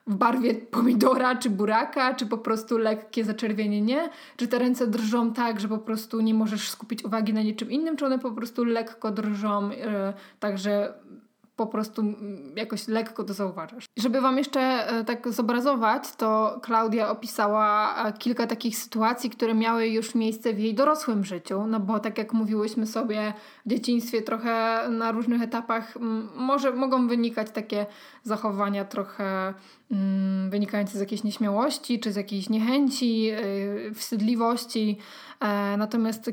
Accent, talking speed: native, 140 wpm